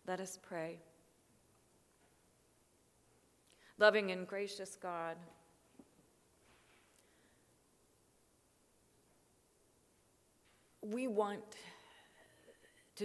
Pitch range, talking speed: 175-225 Hz, 45 wpm